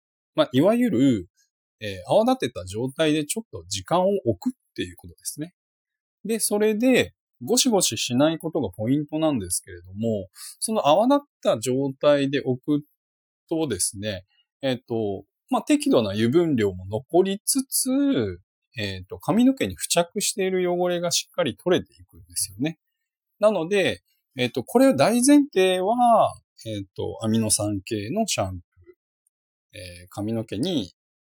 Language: Japanese